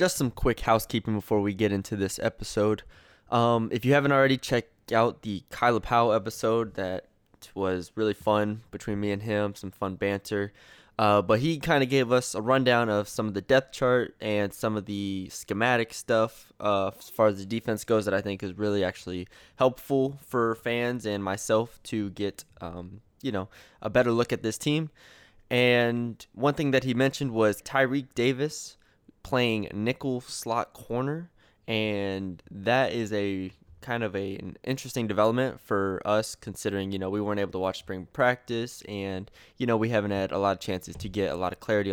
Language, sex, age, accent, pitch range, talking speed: English, male, 20-39, American, 100-120 Hz, 190 wpm